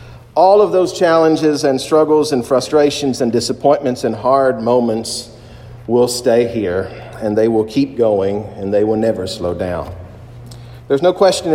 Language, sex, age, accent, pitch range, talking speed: English, male, 50-69, American, 120-180 Hz, 155 wpm